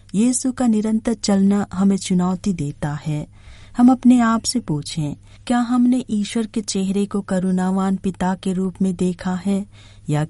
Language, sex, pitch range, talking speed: Hindi, female, 150-190 Hz, 155 wpm